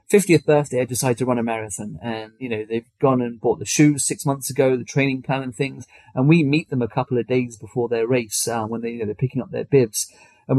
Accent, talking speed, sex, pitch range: British, 265 wpm, male, 125-165 Hz